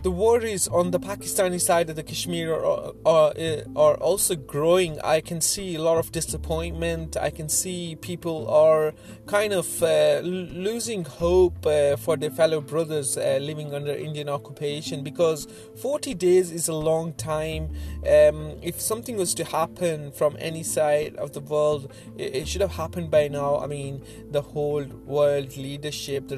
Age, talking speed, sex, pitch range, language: 30-49, 170 wpm, male, 145-165 Hz, English